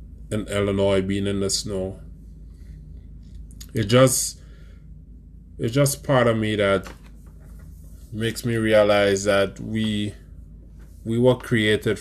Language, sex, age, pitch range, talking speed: English, male, 20-39, 80-105 Hz, 110 wpm